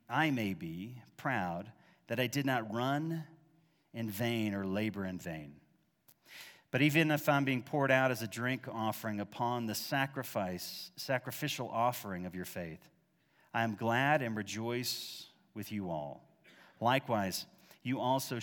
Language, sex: English, male